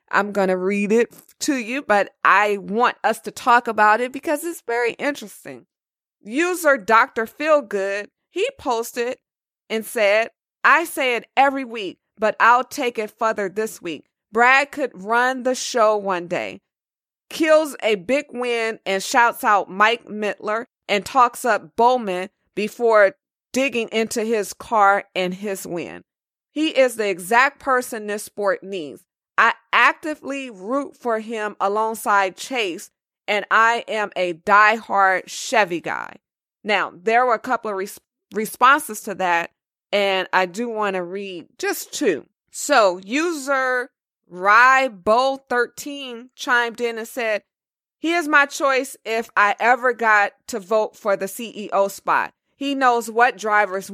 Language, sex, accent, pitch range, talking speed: English, female, American, 205-260 Hz, 145 wpm